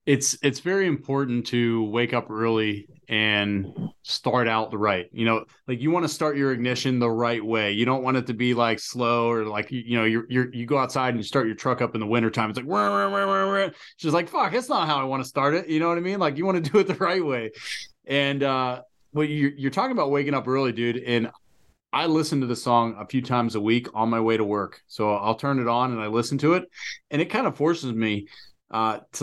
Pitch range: 110-140 Hz